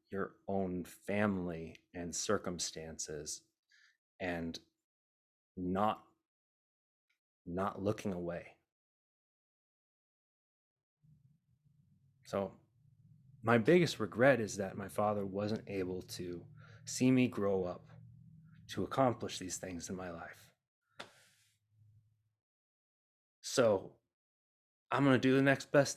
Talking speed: 90 wpm